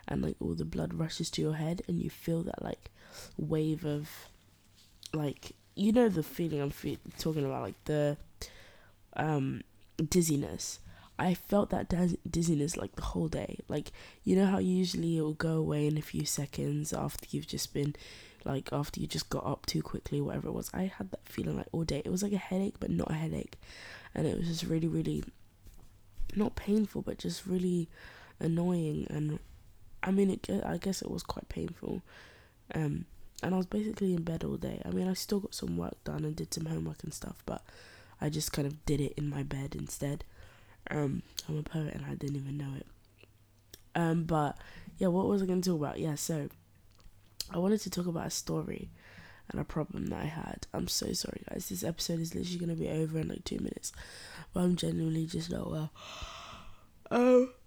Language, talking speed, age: English, 200 wpm, 20-39